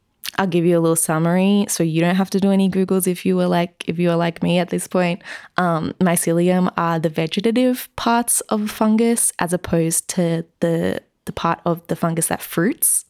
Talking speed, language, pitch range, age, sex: 210 wpm, English, 165-190 Hz, 20-39, female